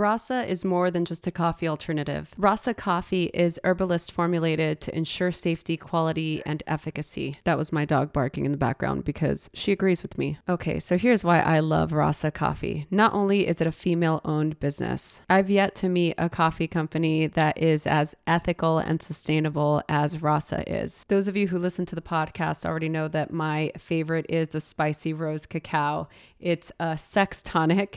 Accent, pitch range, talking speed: American, 155-180 Hz, 180 wpm